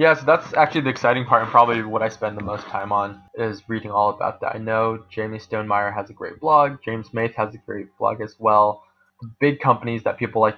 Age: 20-39